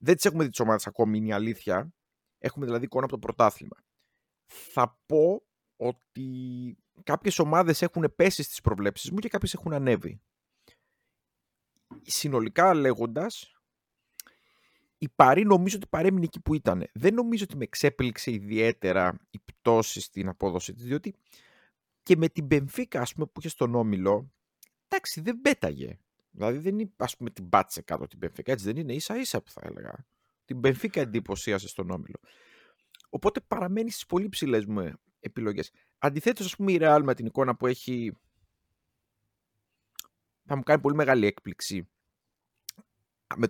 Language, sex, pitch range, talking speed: Greek, male, 115-180 Hz, 155 wpm